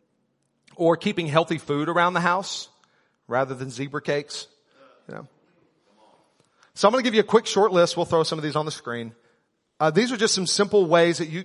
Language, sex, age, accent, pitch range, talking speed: English, male, 40-59, American, 150-205 Hz, 210 wpm